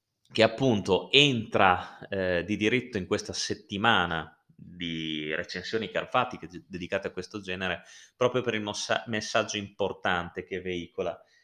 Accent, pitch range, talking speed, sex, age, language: native, 90-105 Hz, 125 wpm, male, 20-39, Italian